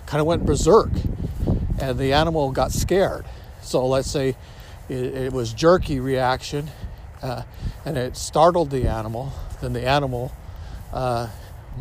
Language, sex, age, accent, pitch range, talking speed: English, male, 50-69, American, 90-130 Hz, 130 wpm